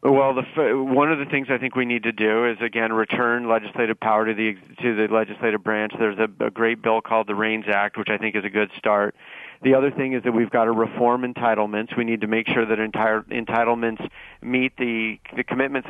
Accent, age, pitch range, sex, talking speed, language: American, 40-59, 110-125 Hz, male, 230 wpm, English